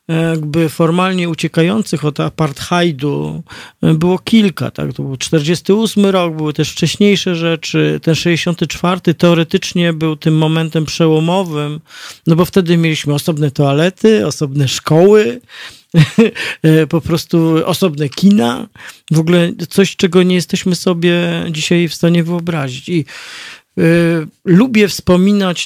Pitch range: 145-175 Hz